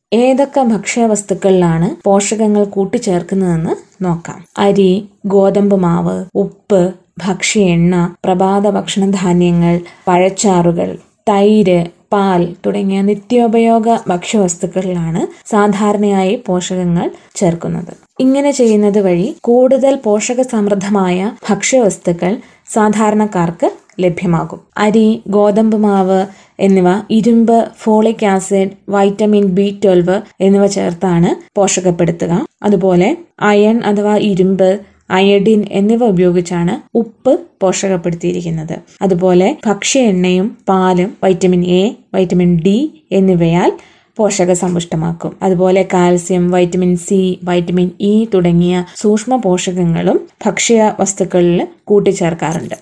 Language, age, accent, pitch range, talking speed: Malayalam, 20-39, native, 180-215 Hz, 80 wpm